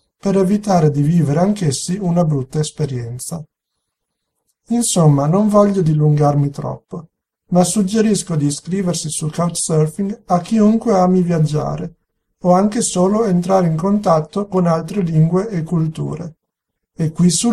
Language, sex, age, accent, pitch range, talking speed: Italian, male, 50-69, native, 155-190 Hz, 125 wpm